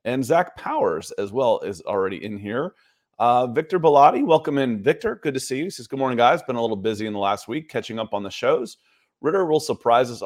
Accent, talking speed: American, 240 wpm